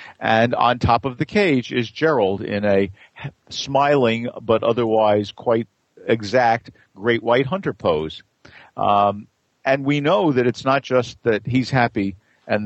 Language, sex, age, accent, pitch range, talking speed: English, male, 50-69, American, 100-130 Hz, 145 wpm